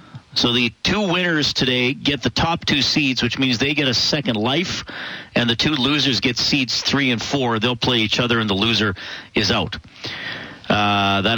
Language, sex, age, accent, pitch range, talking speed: English, male, 50-69, American, 120-145 Hz, 195 wpm